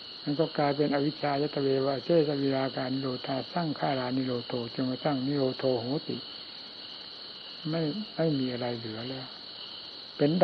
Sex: male